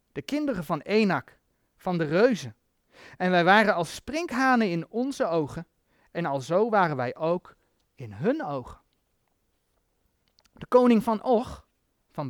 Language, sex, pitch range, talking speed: Dutch, male, 170-255 Hz, 135 wpm